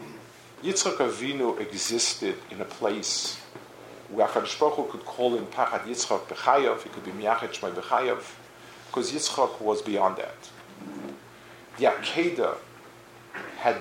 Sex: male